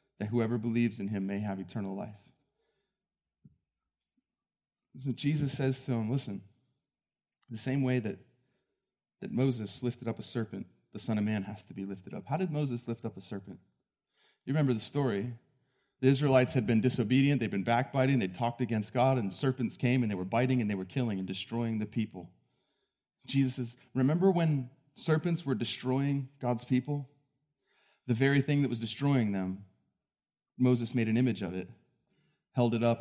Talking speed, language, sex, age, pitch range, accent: 175 wpm, English, male, 30-49, 105-130 Hz, American